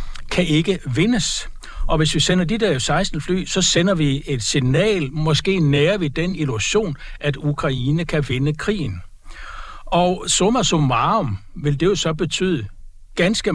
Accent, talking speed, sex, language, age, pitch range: native, 155 wpm, male, Danish, 60-79, 140-175 Hz